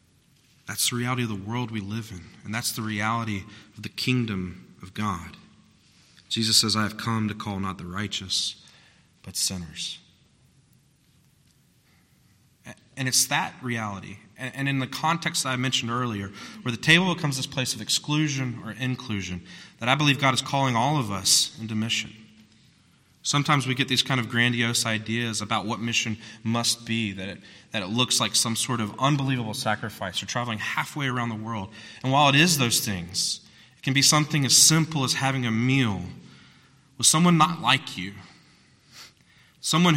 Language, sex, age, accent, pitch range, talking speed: English, male, 30-49, American, 110-135 Hz, 170 wpm